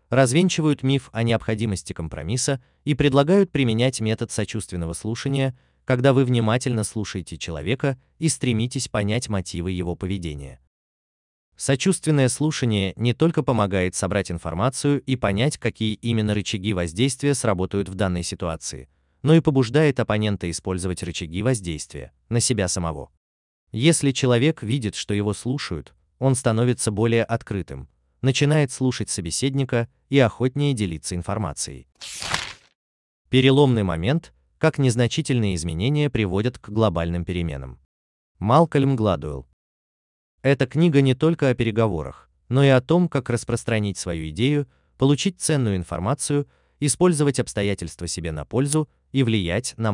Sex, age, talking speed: male, 30-49, 125 wpm